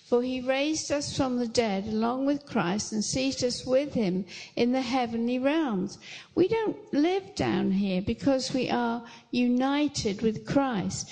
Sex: female